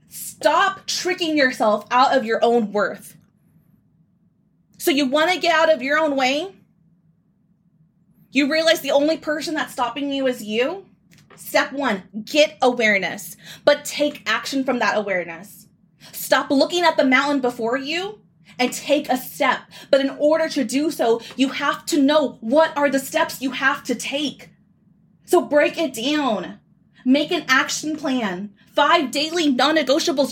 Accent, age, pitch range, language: American, 20-39, 245-325 Hz, English